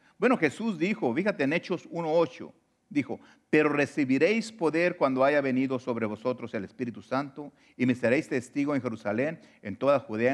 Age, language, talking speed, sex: 50-69, English, 165 wpm, male